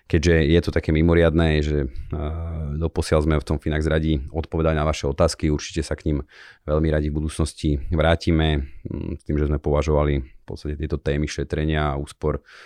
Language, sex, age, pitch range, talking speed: Slovak, male, 30-49, 75-85 Hz, 175 wpm